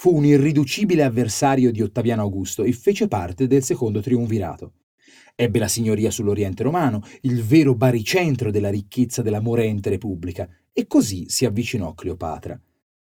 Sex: male